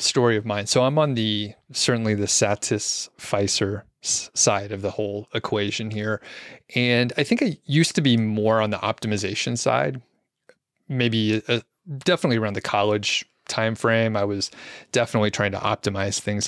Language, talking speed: English, 155 wpm